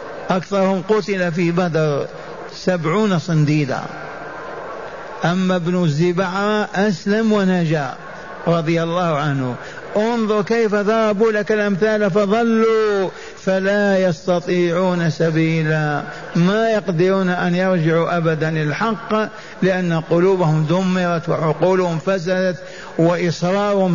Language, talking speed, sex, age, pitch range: Arabic, 90 wpm, male, 50-69, 170-210 Hz